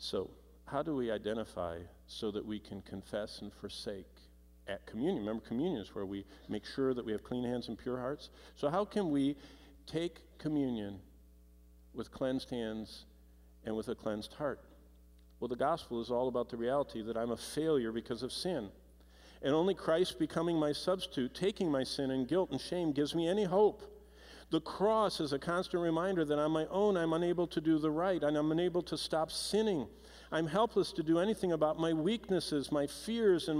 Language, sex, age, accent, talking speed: English, male, 50-69, American, 195 wpm